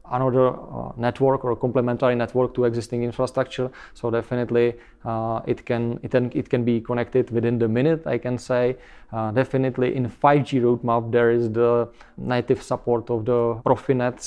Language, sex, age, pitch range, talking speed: English, male, 20-39, 115-125 Hz, 170 wpm